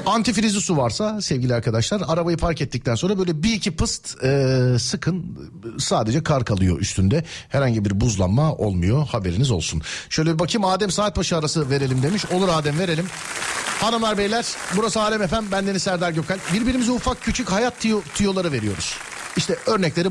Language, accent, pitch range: Turkish, native, 125-195 Hz